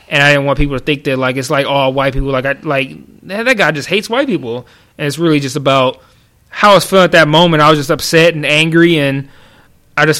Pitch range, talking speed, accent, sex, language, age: 145-185 Hz, 270 wpm, American, male, English, 20-39